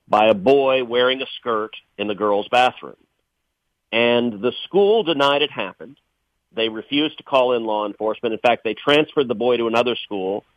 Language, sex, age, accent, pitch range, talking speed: English, male, 40-59, American, 120-165 Hz, 180 wpm